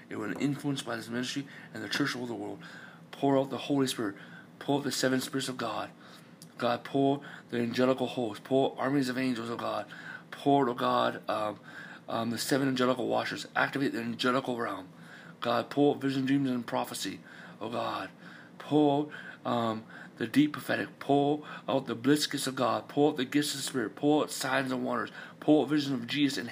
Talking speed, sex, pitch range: 205 wpm, male, 120-145 Hz